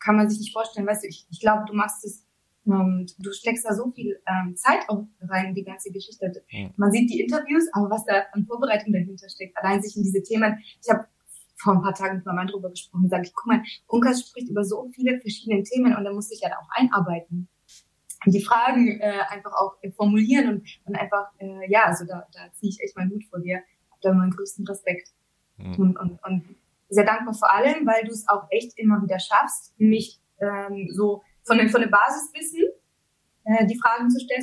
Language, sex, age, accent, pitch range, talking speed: German, female, 20-39, German, 195-230 Hz, 225 wpm